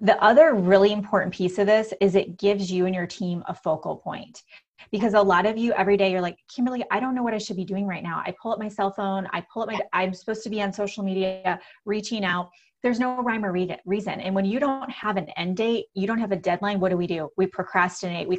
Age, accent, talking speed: 20-39, American, 265 wpm